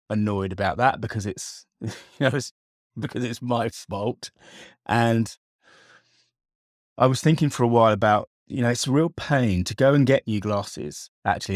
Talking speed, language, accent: 170 wpm, English, British